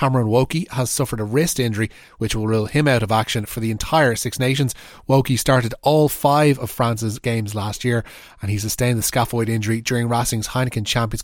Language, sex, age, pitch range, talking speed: English, male, 30-49, 115-145 Hz, 205 wpm